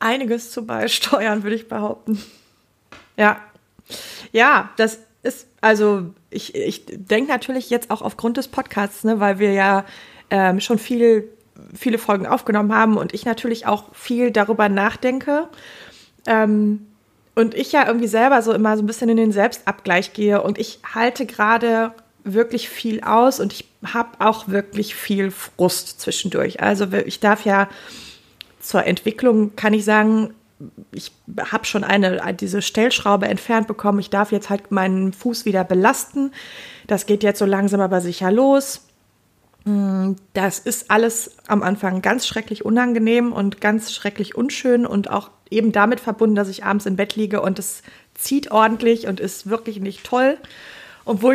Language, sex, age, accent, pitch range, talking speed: German, female, 30-49, German, 200-235 Hz, 155 wpm